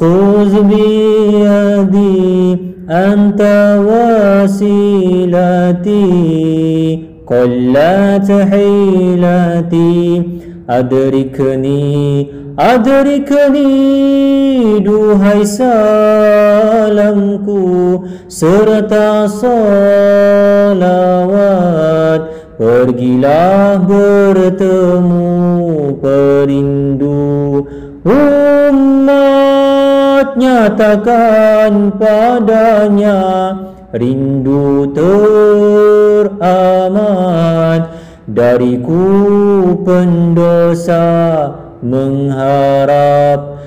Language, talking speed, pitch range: Malay, 30 wpm, 170-210 Hz